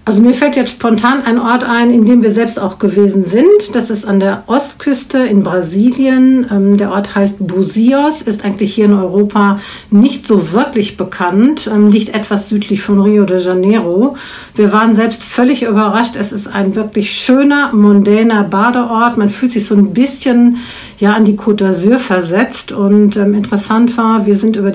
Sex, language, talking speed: female, German, 175 wpm